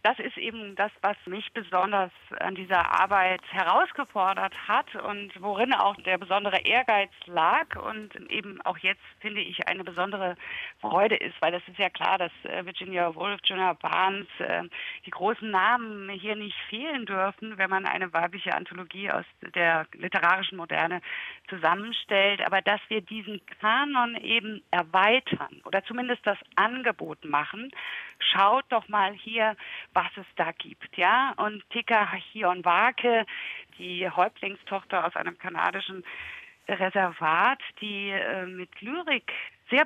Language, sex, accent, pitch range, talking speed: German, female, German, 185-225 Hz, 140 wpm